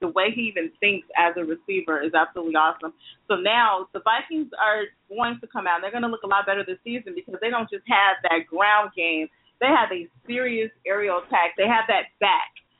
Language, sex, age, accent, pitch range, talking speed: English, female, 30-49, American, 190-245 Hz, 220 wpm